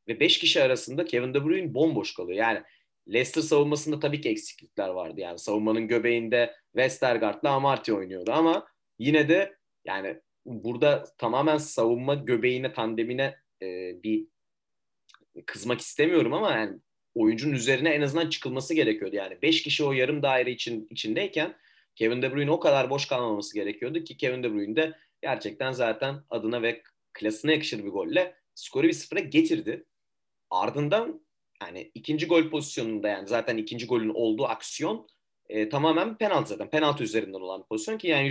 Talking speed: 155 wpm